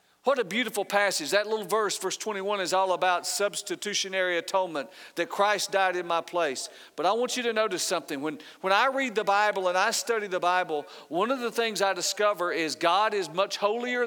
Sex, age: male, 50-69